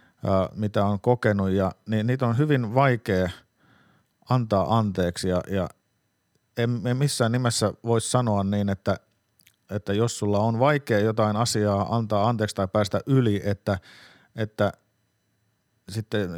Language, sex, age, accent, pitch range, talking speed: Finnish, male, 50-69, native, 105-125 Hz, 135 wpm